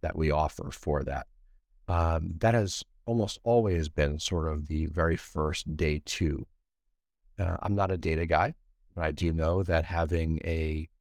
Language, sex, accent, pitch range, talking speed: English, male, American, 80-100 Hz, 170 wpm